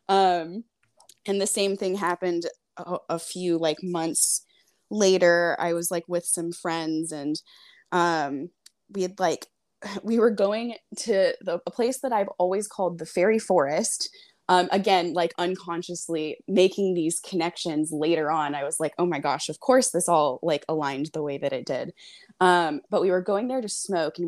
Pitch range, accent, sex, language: 165-210 Hz, American, female, English